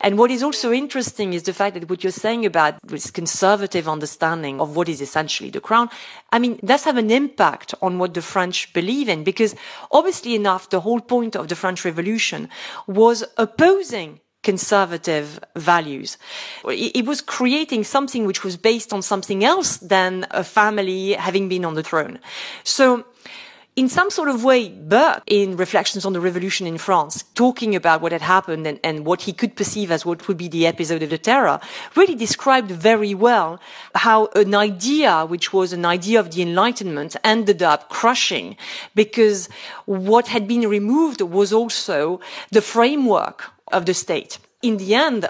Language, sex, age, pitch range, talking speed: English, female, 40-59, 185-235 Hz, 175 wpm